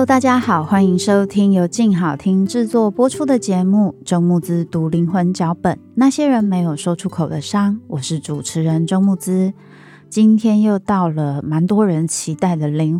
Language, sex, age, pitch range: Chinese, female, 20-39, 155-190 Hz